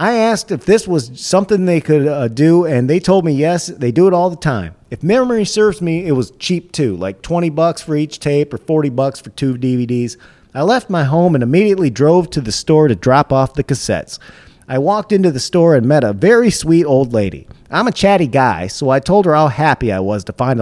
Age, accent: 40-59, American